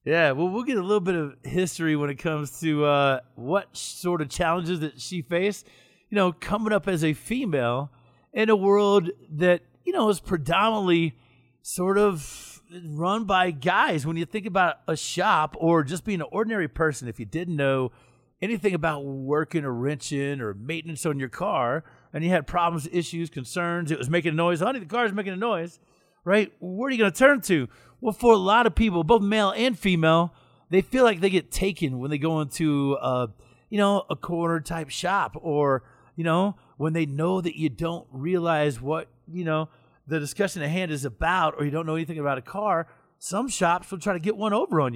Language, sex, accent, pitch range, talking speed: English, male, American, 145-190 Hz, 205 wpm